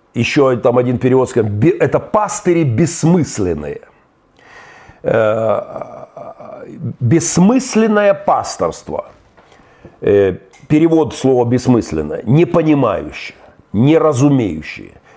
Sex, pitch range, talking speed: male, 115-160 Hz, 60 wpm